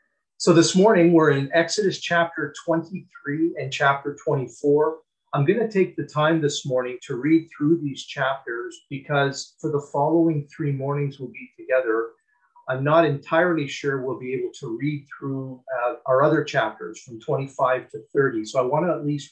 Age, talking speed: 40-59, 175 wpm